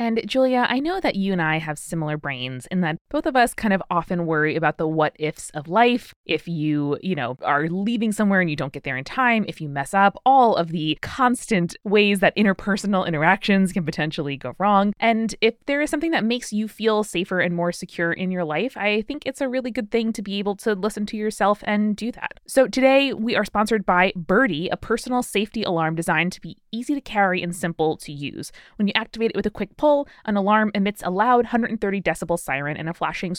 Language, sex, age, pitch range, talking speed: English, female, 20-39, 170-220 Hz, 230 wpm